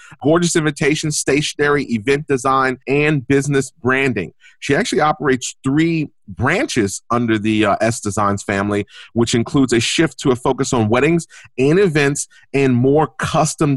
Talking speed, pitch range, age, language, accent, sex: 145 wpm, 115-145 Hz, 30-49, English, American, male